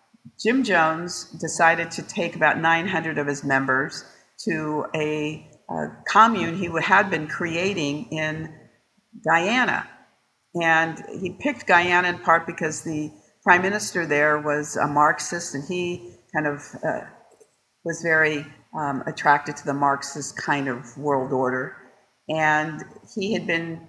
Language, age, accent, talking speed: English, 50-69, American, 135 wpm